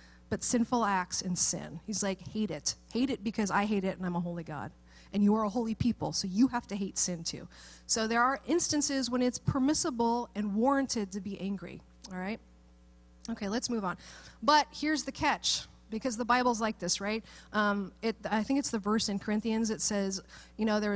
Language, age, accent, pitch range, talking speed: English, 30-49, American, 195-245 Hz, 215 wpm